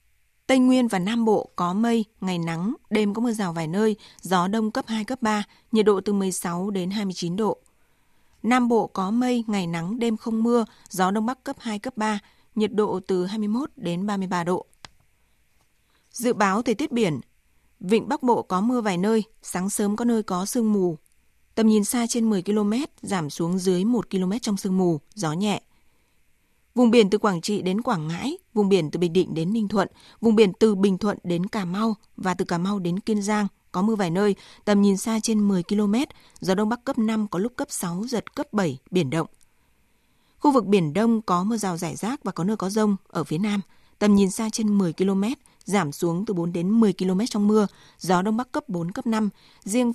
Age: 20-39